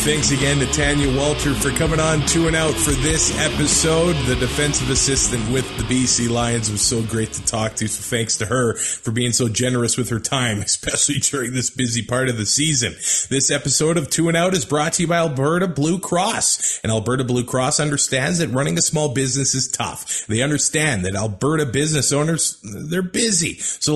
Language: English